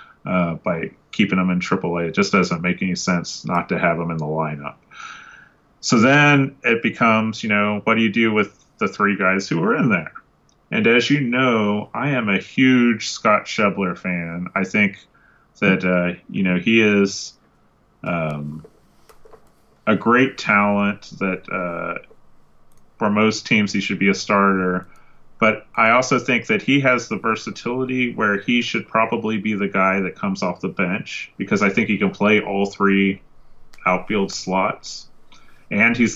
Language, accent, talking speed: English, American, 175 wpm